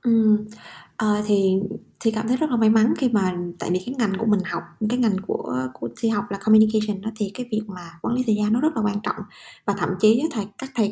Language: Vietnamese